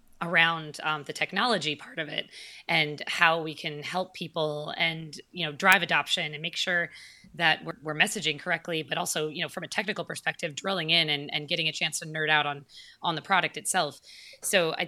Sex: female